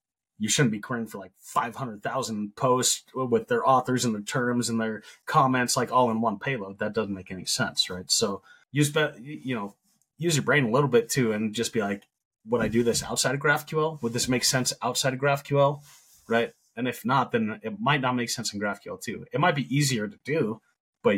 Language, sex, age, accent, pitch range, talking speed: English, male, 30-49, American, 105-135 Hz, 215 wpm